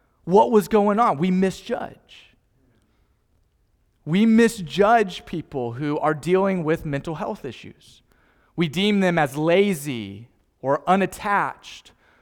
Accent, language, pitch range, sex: American, English, 145-185 Hz, male